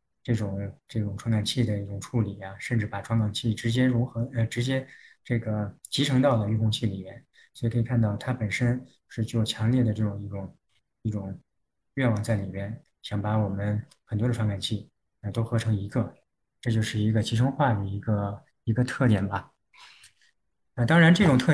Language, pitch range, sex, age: Chinese, 105-125 Hz, male, 20-39